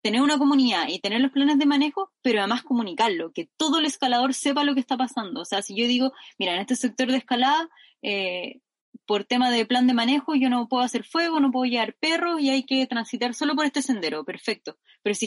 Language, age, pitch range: Spanish, 10-29, 210-270 Hz